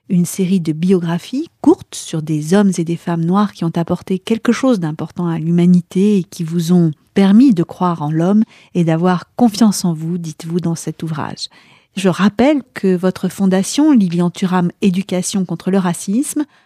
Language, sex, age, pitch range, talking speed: French, female, 40-59, 170-205 Hz, 175 wpm